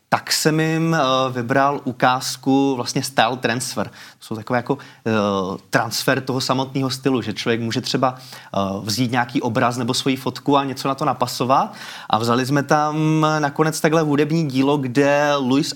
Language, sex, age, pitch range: Czech, male, 20-39, 130-145 Hz